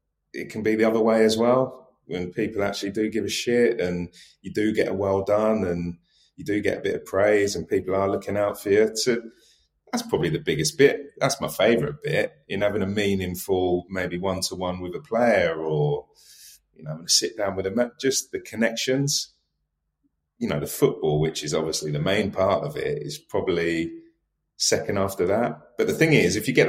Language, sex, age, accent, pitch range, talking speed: English, male, 30-49, British, 80-110 Hz, 205 wpm